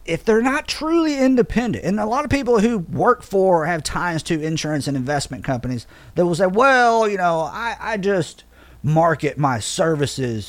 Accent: American